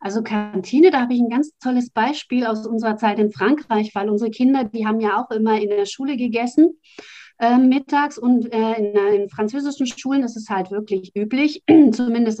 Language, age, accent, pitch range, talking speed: German, 30-49, German, 205-250 Hz, 200 wpm